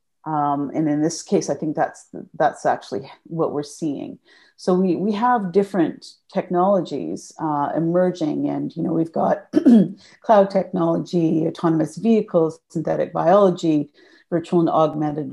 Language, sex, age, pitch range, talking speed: English, female, 40-59, 155-195 Hz, 135 wpm